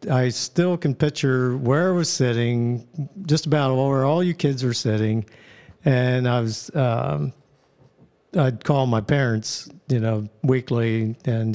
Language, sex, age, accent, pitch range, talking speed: English, male, 50-69, American, 115-140 Hz, 145 wpm